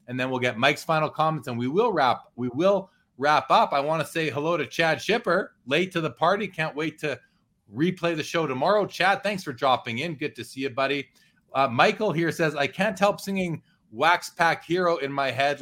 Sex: male